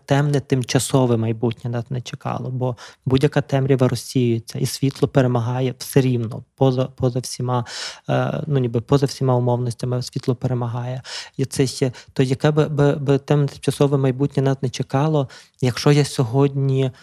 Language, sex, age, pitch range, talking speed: Ukrainian, male, 20-39, 130-145 Hz, 145 wpm